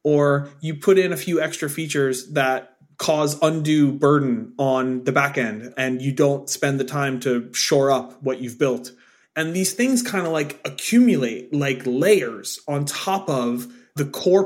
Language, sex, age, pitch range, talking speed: English, male, 30-49, 130-160 Hz, 170 wpm